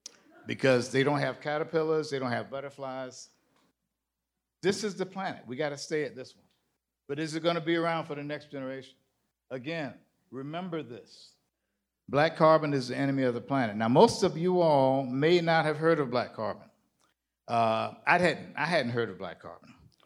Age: 50-69